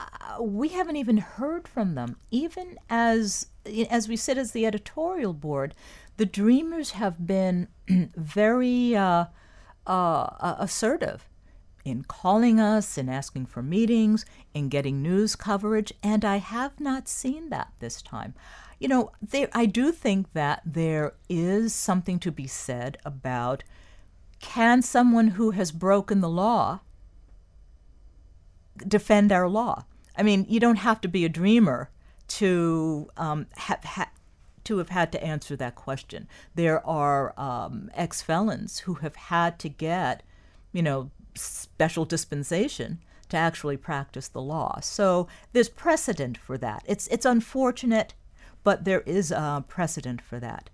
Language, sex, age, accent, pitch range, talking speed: English, female, 50-69, American, 145-225 Hz, 140 wpm